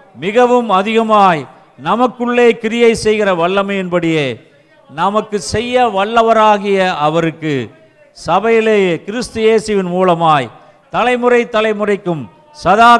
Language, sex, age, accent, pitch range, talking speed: Tamil, male, 50-69, native, 175-255 Hz, 80 wpm